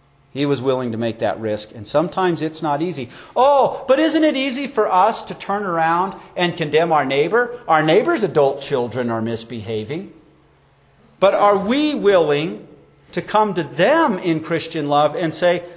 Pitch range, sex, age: 155-220 Hz, male, 50-69